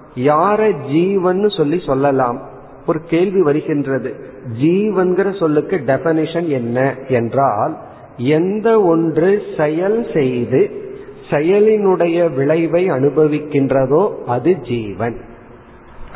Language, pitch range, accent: Tamil, 130-175 Hz, native